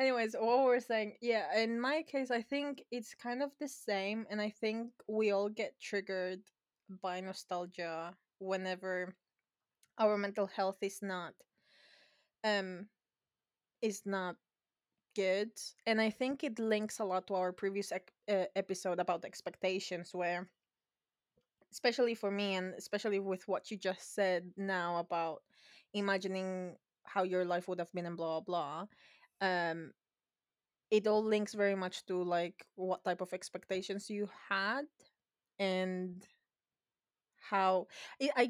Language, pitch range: English, 185-225 Hz